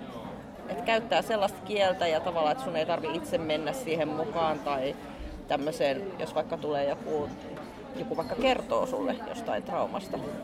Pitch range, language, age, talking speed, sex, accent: 160-230 Hz, Finnish, 30-49, 150 wpm, female, native